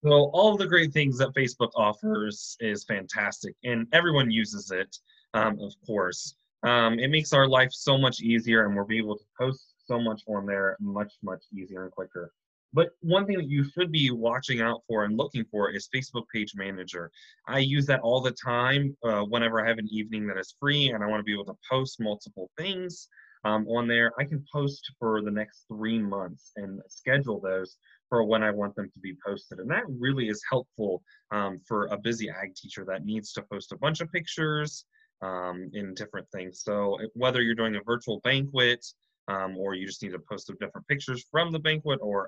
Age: 20-39